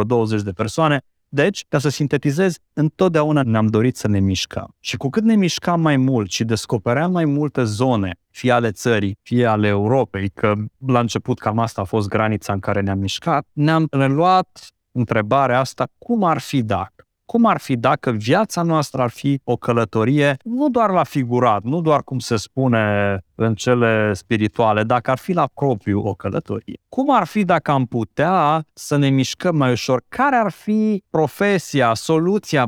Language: Romanian